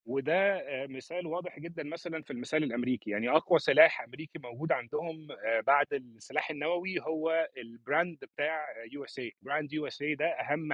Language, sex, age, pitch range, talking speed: Arabic, male, 30-49, 135-170 Hz, 140 wpm